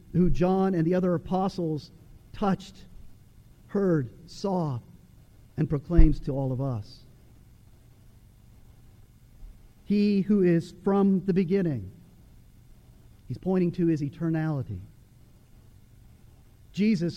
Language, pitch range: English, 125-200 Hz